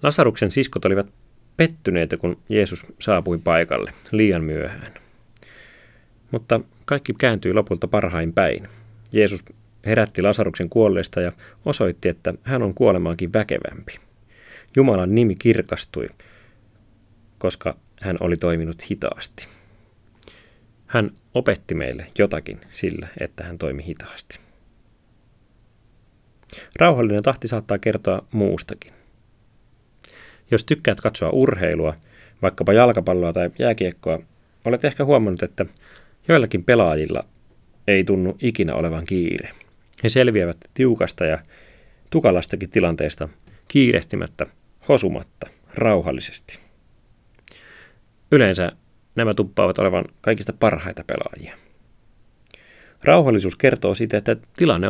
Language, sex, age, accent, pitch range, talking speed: Finnish, male, 30-49, native, 95-115 Hz, 95 wpm